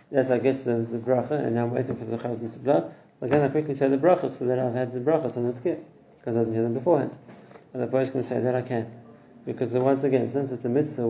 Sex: male